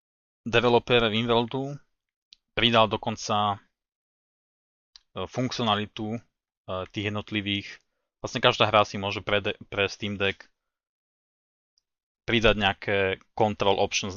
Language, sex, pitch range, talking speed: Slovak, male, 95-110 Hz, 95 wpm